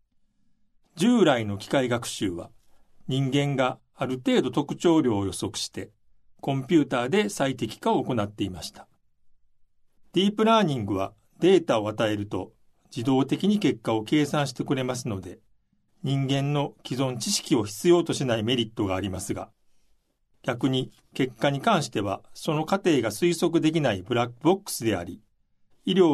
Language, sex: Japanese, male